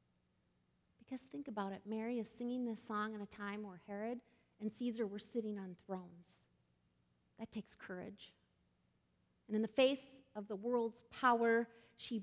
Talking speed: 155 wpm